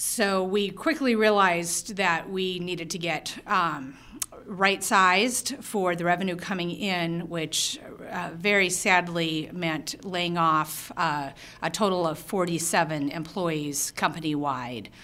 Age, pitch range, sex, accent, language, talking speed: 40-59, 155-190 Hz, female, American, English, 120 wpm